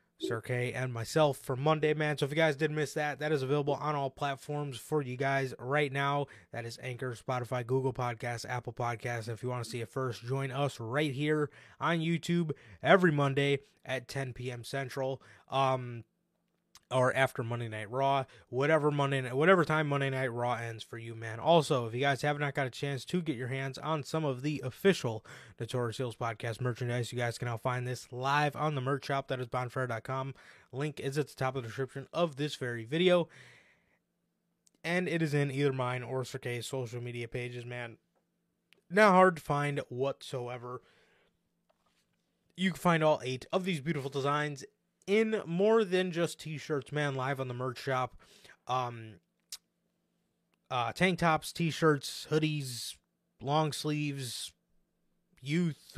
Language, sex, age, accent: English, male, 20-39, American